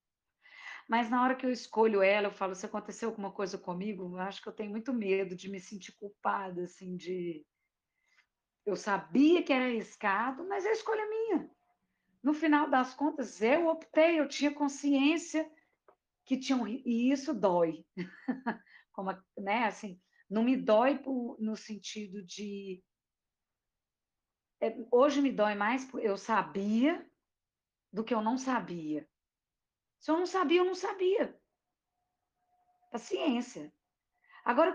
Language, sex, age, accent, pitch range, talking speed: Portuguese, female, 40-59, Brazilian, 195-280 Hz, 145 wpm